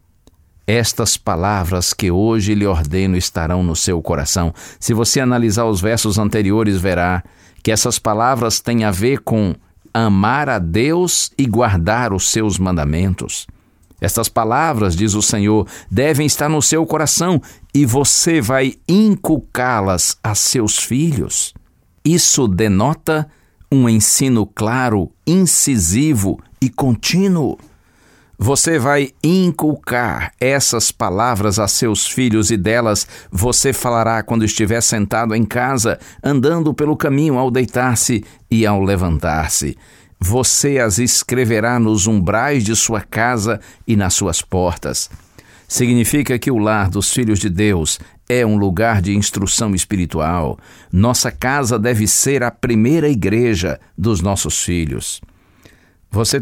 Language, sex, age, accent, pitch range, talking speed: Portuguese, male, 60-79, Brazilian, 95-125 Hz, 125 wpm